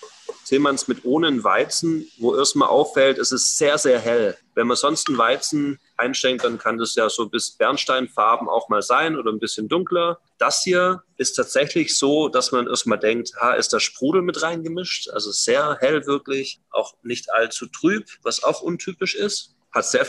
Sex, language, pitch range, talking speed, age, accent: male, German, 115-170 Hz, 190 wpm, 30-49, German